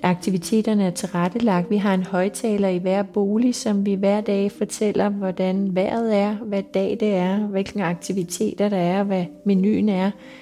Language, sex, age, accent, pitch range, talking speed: Danish, female, 30-49, native, 180-210 Hz, 165 wpm